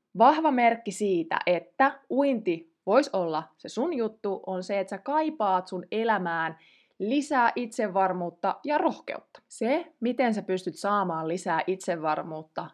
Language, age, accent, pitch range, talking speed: Finnish, 20-39, native, 175-240 Hz, 130 wpm